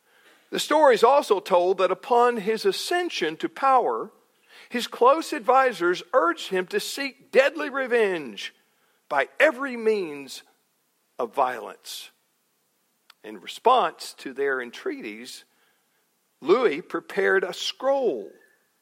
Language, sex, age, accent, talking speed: English, male, 50-69, American, 110 wpm